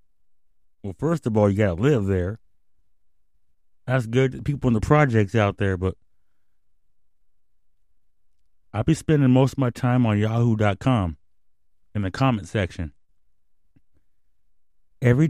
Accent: American